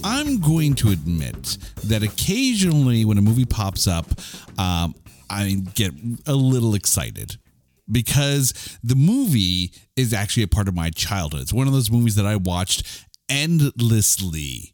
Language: English